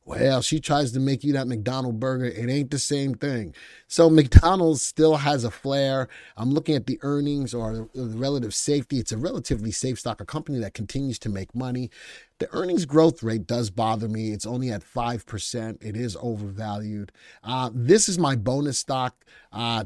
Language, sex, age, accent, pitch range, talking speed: English, male, 30-49, American, 120-150 Hz, 185 wpm